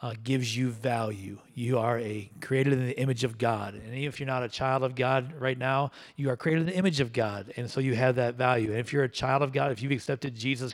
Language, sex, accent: English, male, American